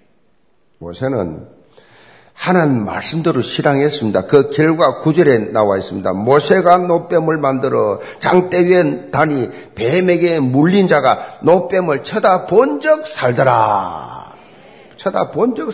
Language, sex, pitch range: Korean, male, 135-195 Hz